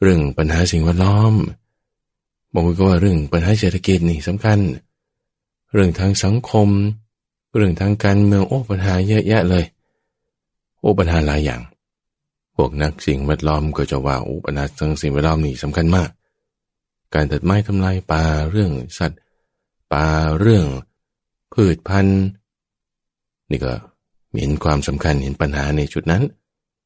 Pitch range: 75-105 Hz